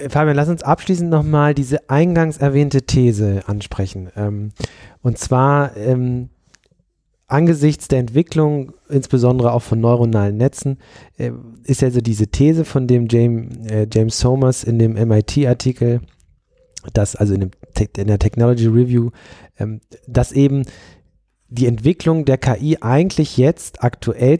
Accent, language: German, German